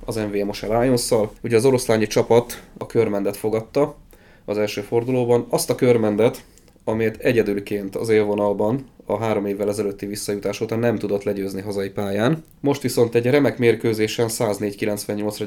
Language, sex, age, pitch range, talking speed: Hungarian, male, 20-39, 105-120 Hz, 145 wpm